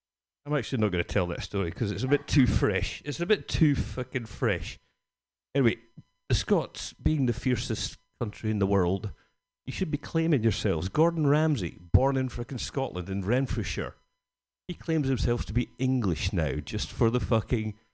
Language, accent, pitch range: English, British, 95-130 Hz